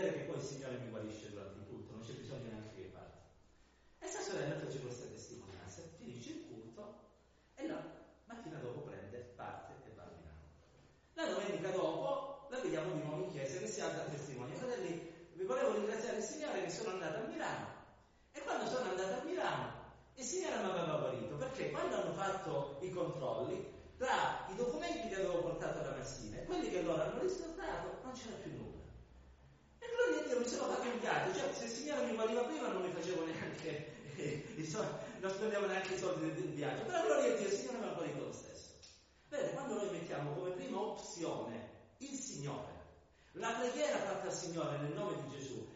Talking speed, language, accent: 195 wpm, Italian, native